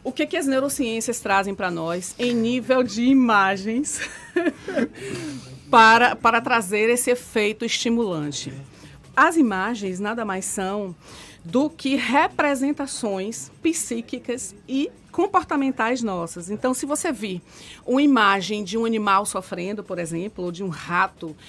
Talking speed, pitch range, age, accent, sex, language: 130 wpm, 200-255 Hz, 40-59, Brazilian, female, Portuguese